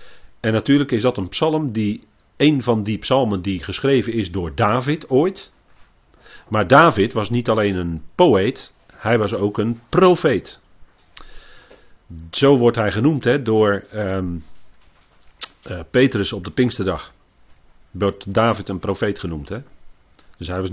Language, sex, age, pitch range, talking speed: Dutch, male, 40-59, 95-130 Hz, 135 wpm